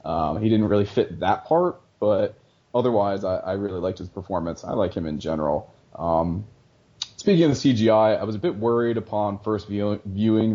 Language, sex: English, male